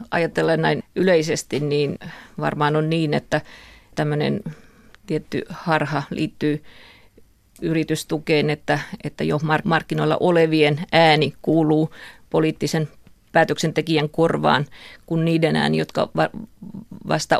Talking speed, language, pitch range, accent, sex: 95 wpm, Finnish, 155-175 Hz, native, female